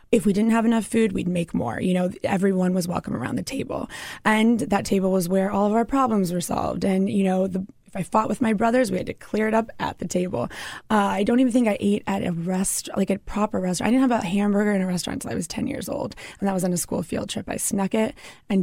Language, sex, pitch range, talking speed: English, female, 185-220 Hz, 275 wpm